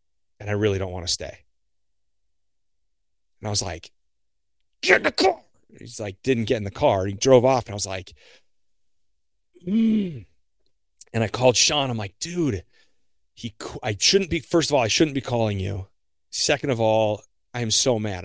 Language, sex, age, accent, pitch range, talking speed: English, male, 30-49, American, 100-120 Hz, 185 wpm